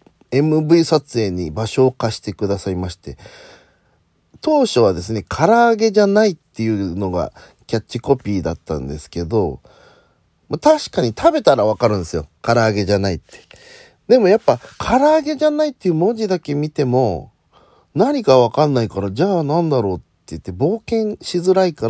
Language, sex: Japanese, male